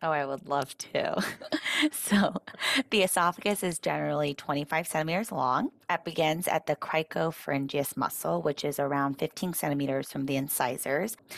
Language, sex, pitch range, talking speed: English, female, 140-180 Hz, 140 wpm